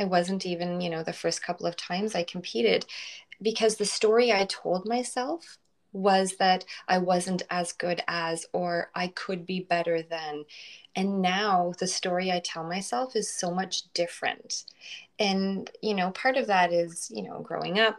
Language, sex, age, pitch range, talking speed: English, female, 20-39, 175-220 Hz, 175 wpm